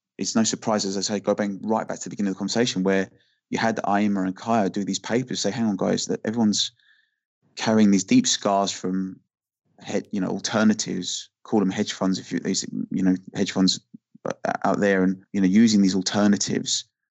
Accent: British